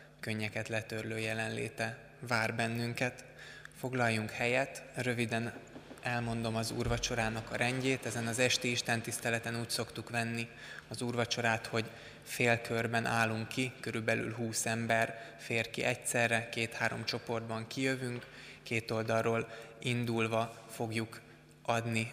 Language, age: Hungarian, 20-39